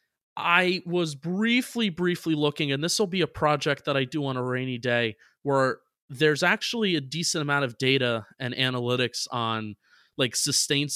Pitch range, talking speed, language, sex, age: 135-180 Hz, 170 wpm, English, male, 30-49